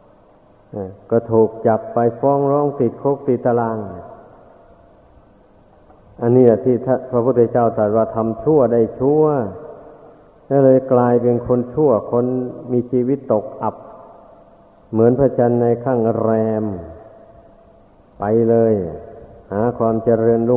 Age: 50-69